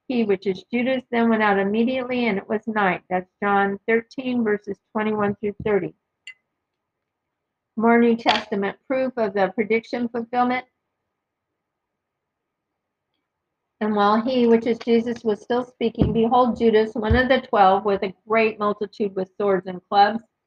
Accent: American